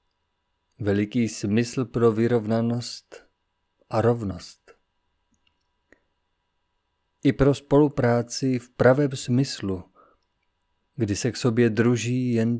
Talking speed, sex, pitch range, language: 85 wpm, male, 95-125 Hz, Czech